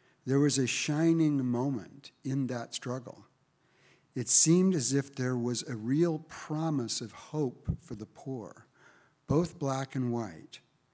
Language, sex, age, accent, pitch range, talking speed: English, male, 60-79, American, 120-145 Hz, 145 wpm